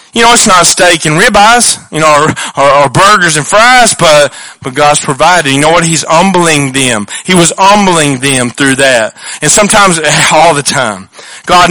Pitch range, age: 145-200 Hz, 40-59